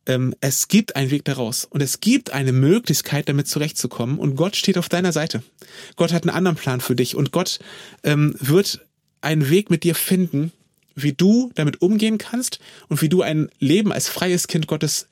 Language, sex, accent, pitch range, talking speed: German, male, German, 145-190 Hz, 185 wpm